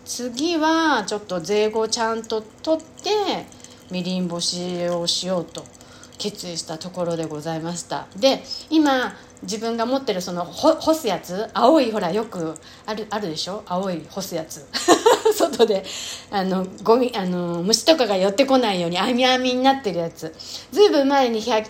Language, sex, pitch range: Japanese, female, 180-275 Hz